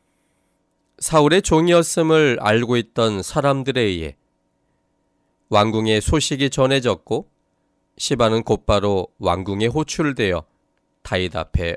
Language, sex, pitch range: Korean, male, 95-145 Hz